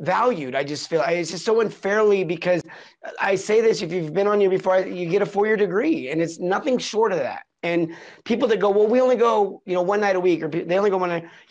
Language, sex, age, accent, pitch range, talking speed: English, male, 30-49, American, 160-210 Hz, 255 wpm